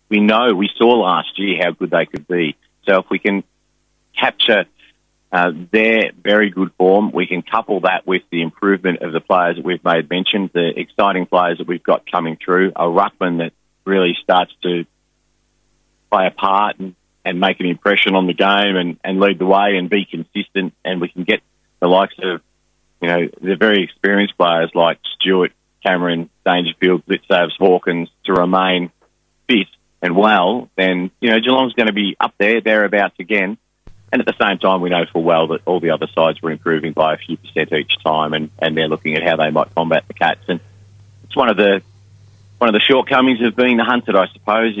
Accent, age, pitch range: Australian, 30-49, 85-100 Hz